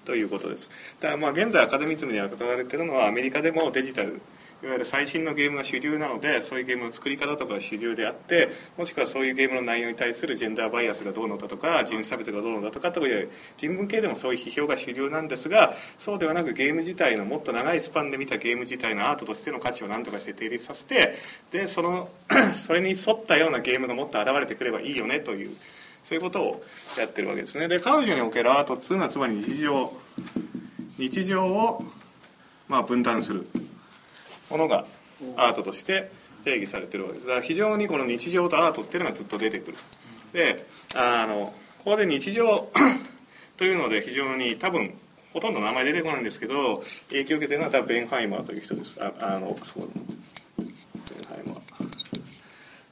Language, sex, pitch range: Japanese, male, 125-180 Hz